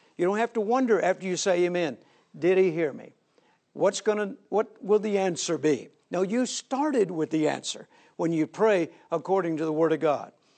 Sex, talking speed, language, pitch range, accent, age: male, 205 wpm, English, 165-210 Hz, American, 60-79